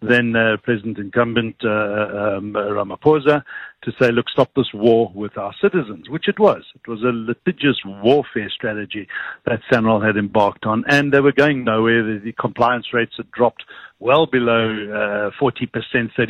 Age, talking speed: 50-69, 160 wpm